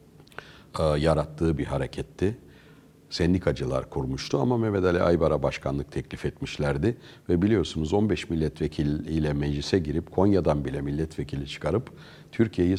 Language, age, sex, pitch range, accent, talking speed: Turkish, 60-79, male, 75-105 Hz, native, 110 wpm